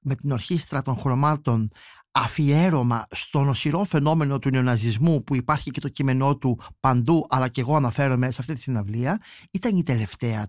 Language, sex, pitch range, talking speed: Greek, male, 130-180 Hz, 165 wpm